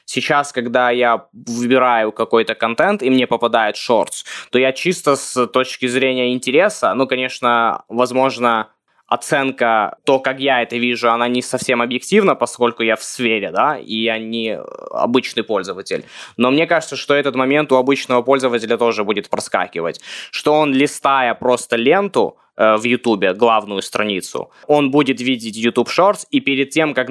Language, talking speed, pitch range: Russian, 155 wpm, 115-135 Hz